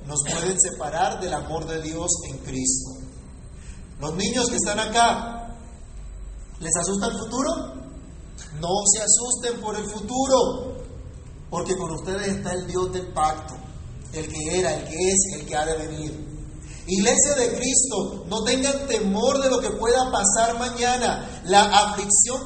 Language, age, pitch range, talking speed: Spanish, 40-59, 155-220 Hz, 150 wpm